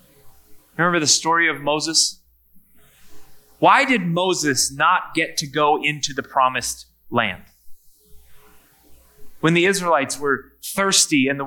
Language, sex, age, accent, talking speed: English, male, 30-49, American, 120 wpm